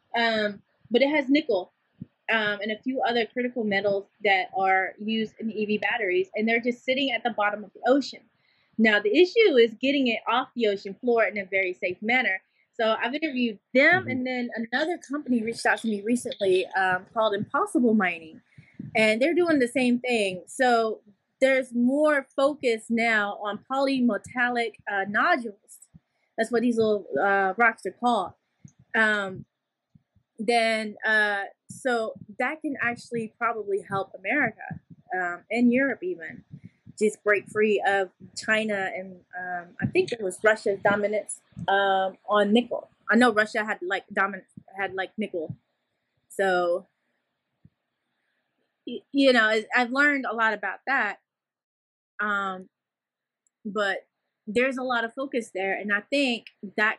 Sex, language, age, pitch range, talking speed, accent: female, English, 20-39, 200-245 Hz, 150 wpm, American